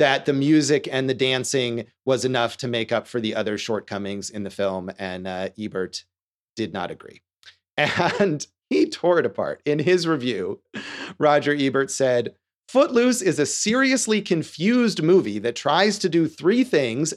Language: English